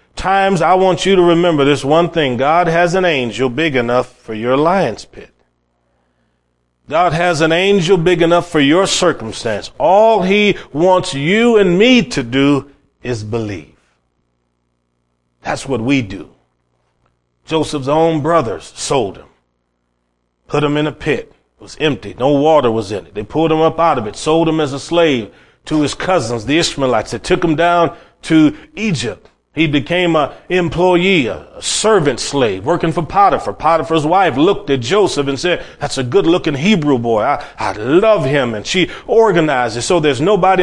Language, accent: English, American